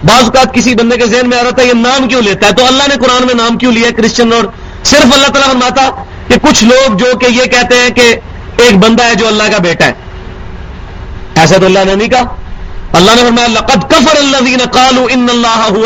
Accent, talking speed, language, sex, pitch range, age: Indian, 195 wpm, English, male, 160-255 Hz, 40-59